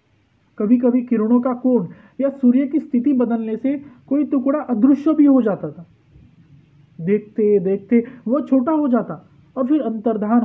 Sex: male